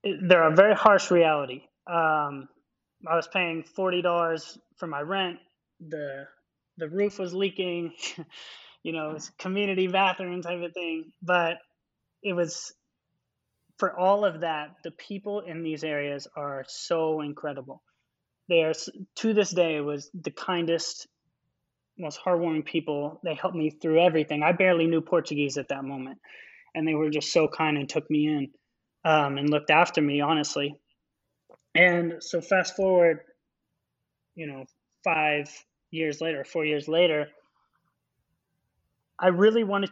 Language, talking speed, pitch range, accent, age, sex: English, 145 wpm, 150-180 Hz, American, 20-39, male